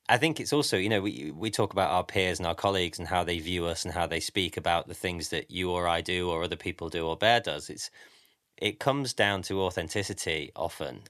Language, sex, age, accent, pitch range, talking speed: English, male, 30-49, British, 90-110 Hz, 250 wpm